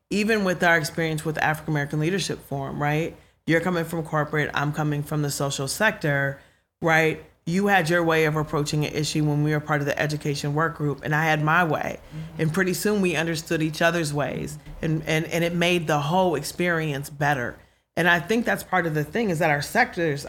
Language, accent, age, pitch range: English, American, 30-49, 145-165 Hz